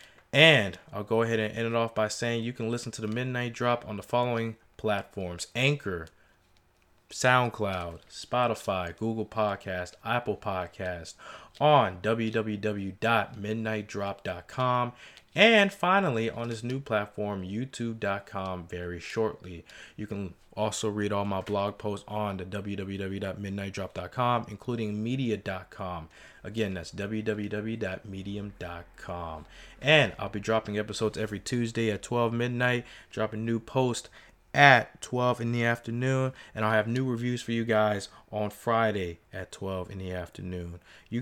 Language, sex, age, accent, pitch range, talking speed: English, male, 20-39, American, 100-120 Hz, 130 wpm